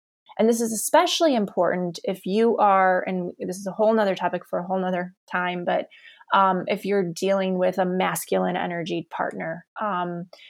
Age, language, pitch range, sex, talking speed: 20-39, English, 185-235 Hz, female, 175 wpm